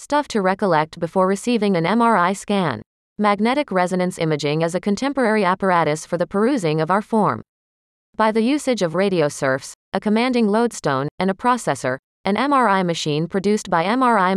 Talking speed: 165 wpm